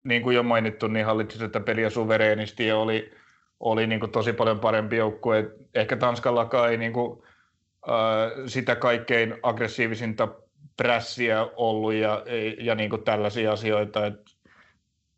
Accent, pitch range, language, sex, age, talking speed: native, 105-120 Hz, Finnish, male, 30-49, 140 wpm